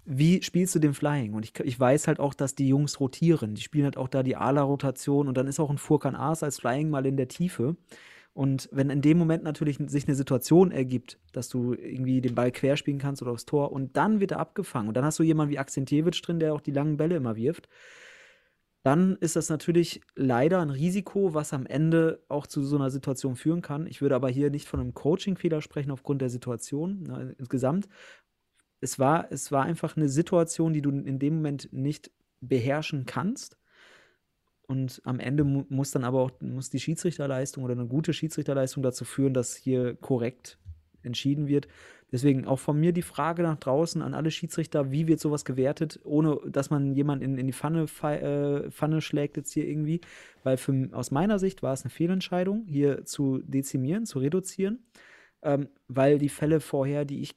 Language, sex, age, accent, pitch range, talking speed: German, male, 30-49, German, 135-160 Hz, 200 wpm